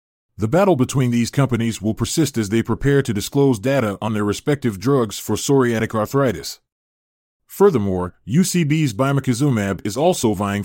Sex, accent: male, American